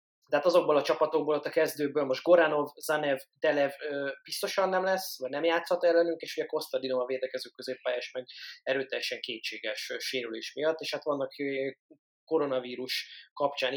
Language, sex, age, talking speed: Hungarian, male, 20-39, 155 wpm